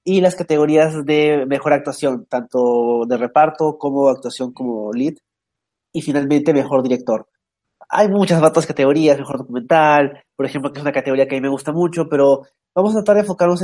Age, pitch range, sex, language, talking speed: 30-49, 135-165 Hz, male, Spanish, 180 wpm